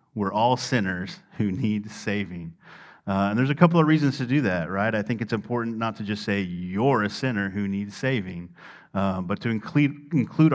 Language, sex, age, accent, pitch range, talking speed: English, male, 40-59, American, 95-120 Hz, 205 wpm